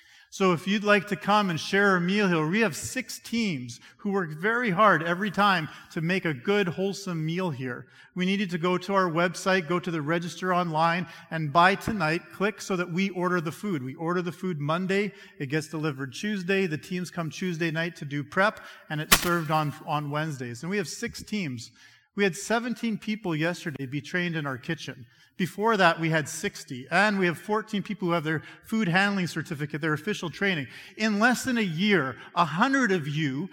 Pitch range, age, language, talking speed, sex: 160-205 Hz, 40-59, English, 210 wpm, male